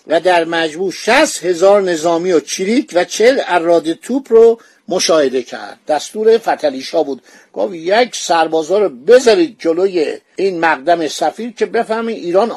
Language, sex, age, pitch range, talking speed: Persian, male, 50-69, 160-230 Hz, 140 wpm